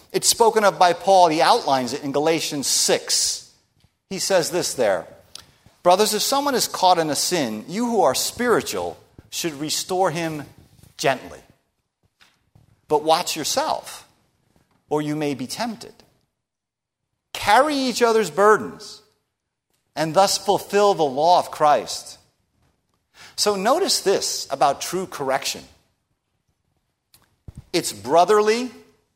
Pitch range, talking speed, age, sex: 155-220 Hz, 120 wpm, 50-69, male